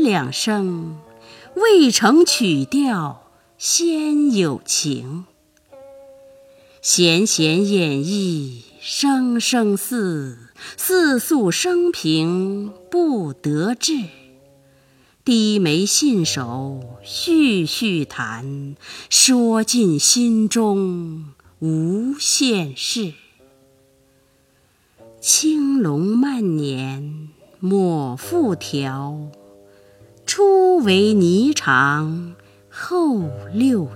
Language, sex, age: Chinese, female, 50-69